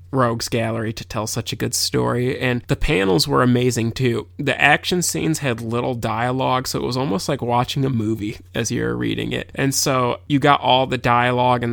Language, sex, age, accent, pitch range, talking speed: English, male, 20-39, American, 115-125 Hz, 205 wpm